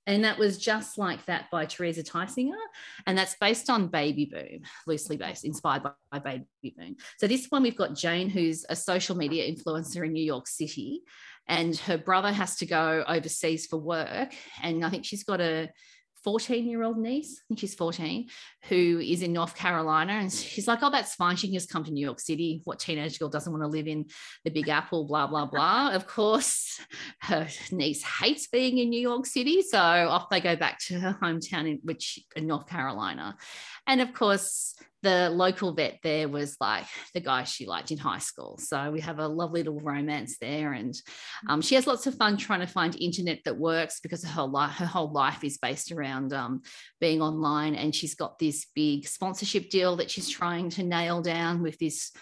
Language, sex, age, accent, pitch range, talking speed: English, female, 40-59, Australian, 155-195 Hz, 200 wpm